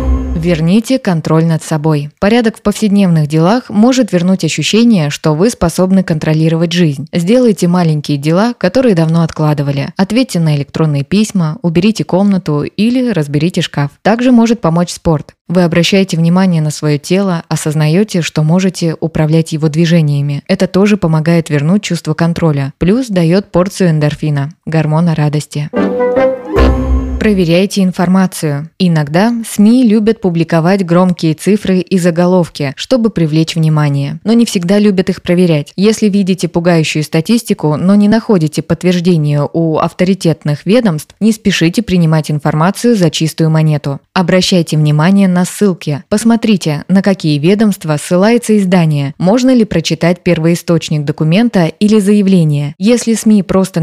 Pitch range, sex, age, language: 155-195 Hz, female, 20-39, Russian